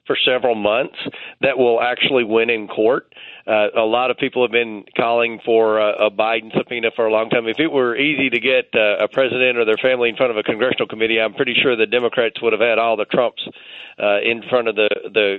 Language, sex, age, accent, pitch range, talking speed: English, male, 40-59, American, 110-125 Hz, 240 wpm